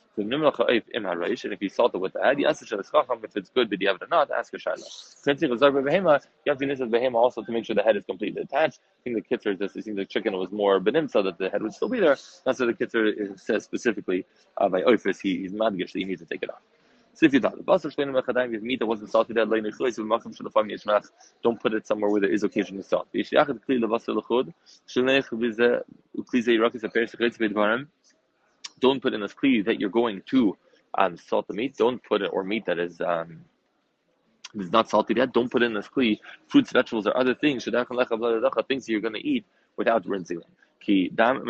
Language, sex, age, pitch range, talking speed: English, male, 20-39, 105-130 Hz, 180 wpm